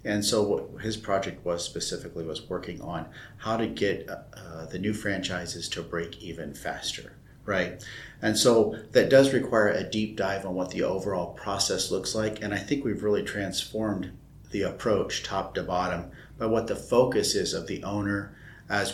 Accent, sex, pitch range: American, male, 95-115 Hz